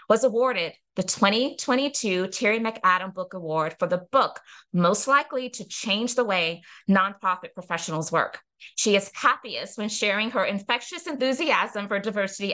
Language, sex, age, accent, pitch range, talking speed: English, female, 20-39, American, 195-250 Hz, 145 wpm